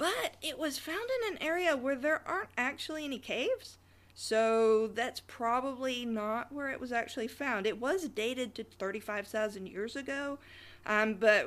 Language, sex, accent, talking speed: English, female, American, 160 wpm